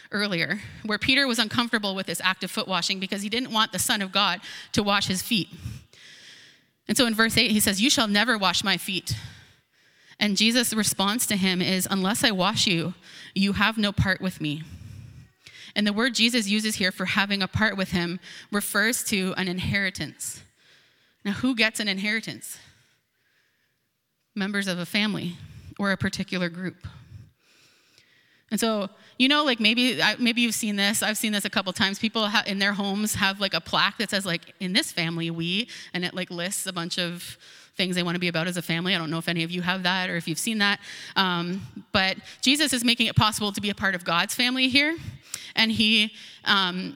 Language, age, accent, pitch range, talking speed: English, 20-39, American, 185-225 Hz, 205 wpm